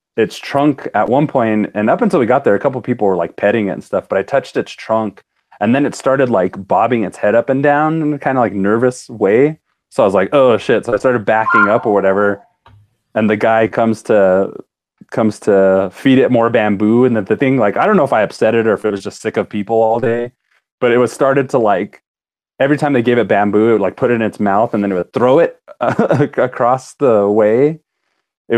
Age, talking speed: 30-49, 250 wpm